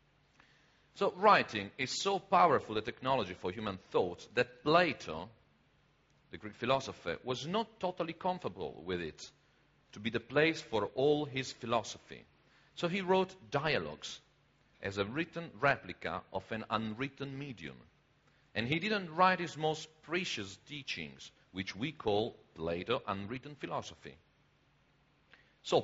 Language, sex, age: English, male, 50-69